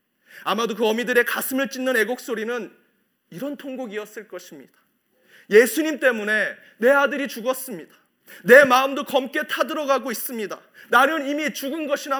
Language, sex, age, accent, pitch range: Korean, male, 30-49, native, 190-270 Hz